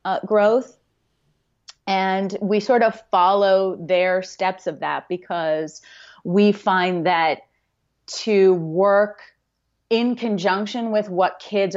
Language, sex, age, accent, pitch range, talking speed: English, female, 30-49, American, 165-205 Hz, 110 wpm